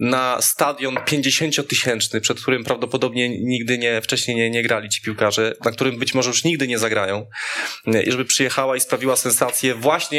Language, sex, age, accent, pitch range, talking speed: Polish, male, 20-39, native, 130-155 Hz, 175 wpm